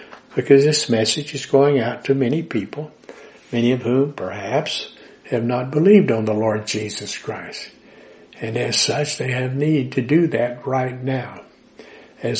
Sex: male